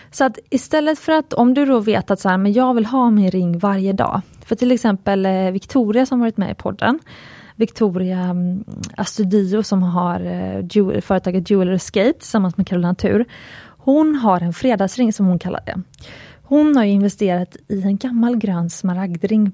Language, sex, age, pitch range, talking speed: Swedish, female, 20-39, 185-240 Hz, 180 wpm